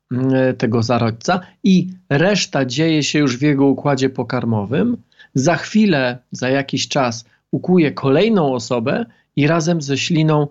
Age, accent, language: 40-59, native, Polish